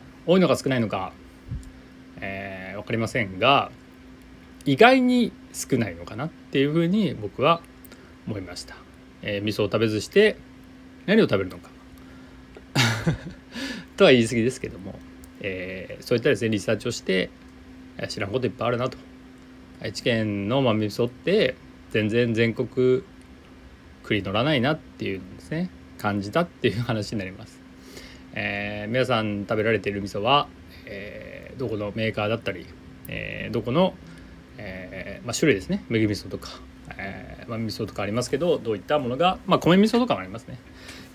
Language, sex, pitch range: Japanese, male, 85-130 Hz